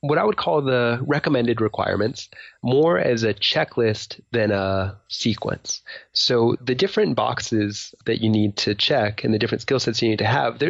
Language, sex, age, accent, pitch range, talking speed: English, male, 20-39, American, 100-115 Hz, 180 wpm